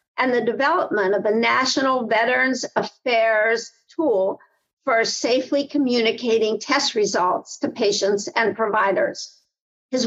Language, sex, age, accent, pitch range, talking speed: English, female, 50-69, American, 220-290 Hz, 115 wpm